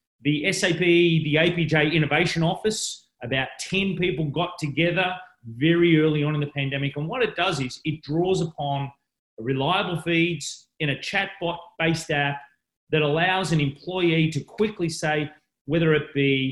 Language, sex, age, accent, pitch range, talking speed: English, male, 30-49, Australian, 140-170 Hz, 150 wpm